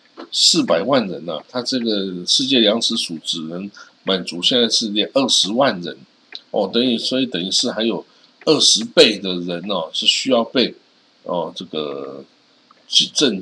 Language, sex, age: Chinese, male, 50-69